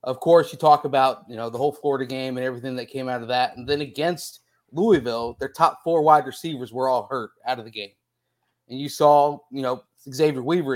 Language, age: English, 30-49